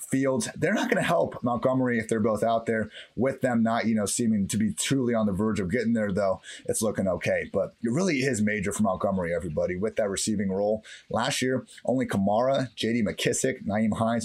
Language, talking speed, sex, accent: English, 215 wpm, male, American